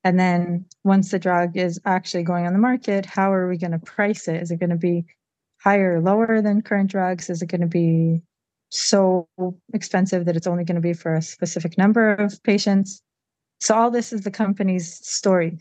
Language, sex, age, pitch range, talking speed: English, female, 30-49, 175-205 Hz, 210 wpm